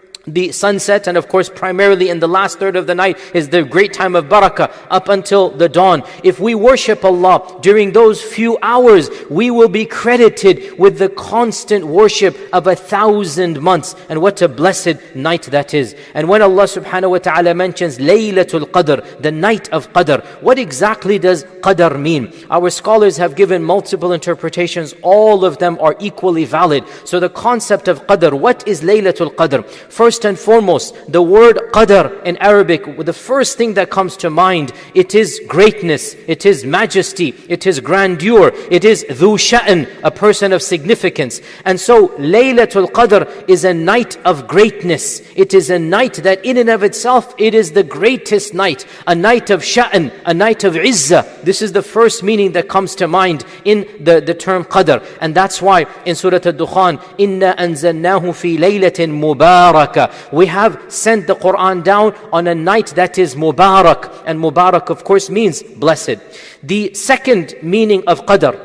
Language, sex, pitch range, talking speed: English, male, 175-205 Hz, 175 wpm